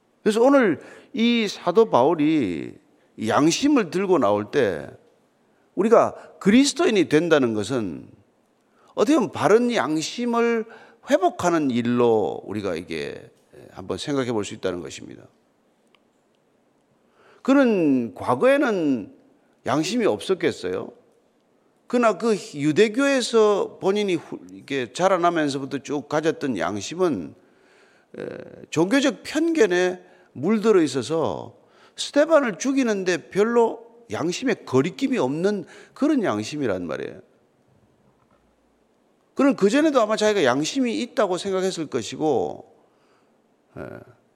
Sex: male